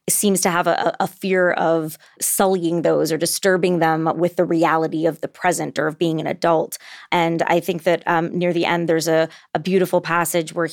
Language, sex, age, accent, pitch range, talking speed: English, female, 20-39, American, 165-190 Hz, 205 wpm